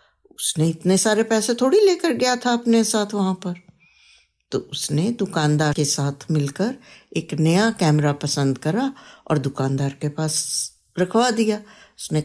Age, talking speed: 60-79, 145 wpm